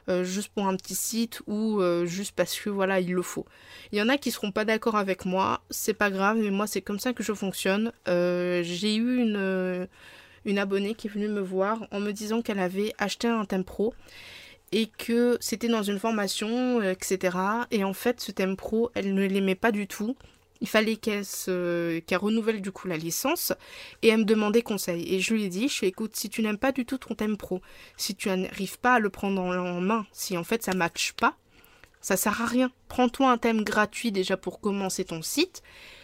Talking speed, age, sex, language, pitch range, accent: 225 wpm, 20-39, female, French, 190-235 Hz, French